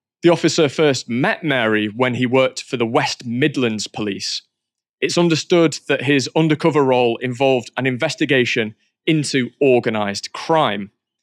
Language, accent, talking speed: English, British, 135 wpm